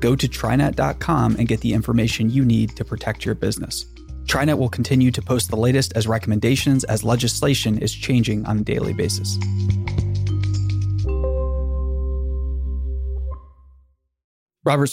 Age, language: 20-39, English